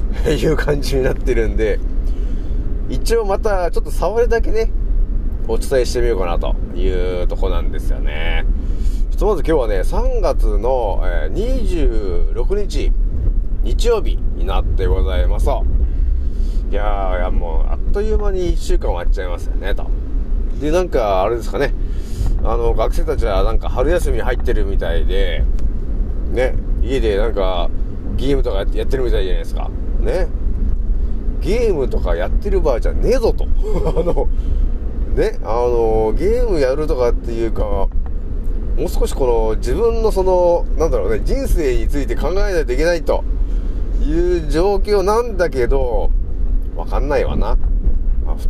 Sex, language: male, Japanese